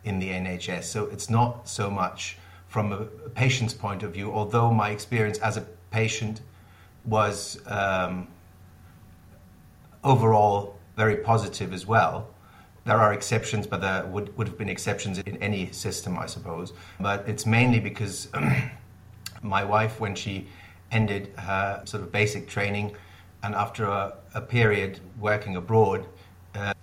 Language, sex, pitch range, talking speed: English, male, 95-110 Hz, 145 wpm